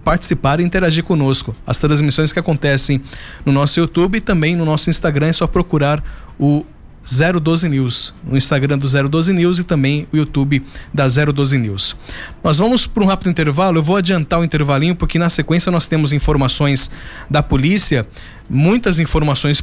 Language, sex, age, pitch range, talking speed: Portuguese, male, 20-39, 140-175 Hz, 170 wpm